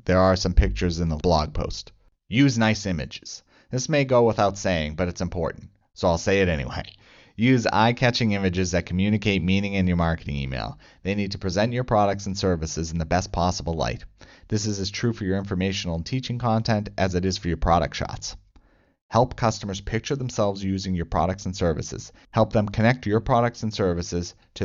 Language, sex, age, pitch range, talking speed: English, male, 30-49, 85-110 Hz, 195 wpm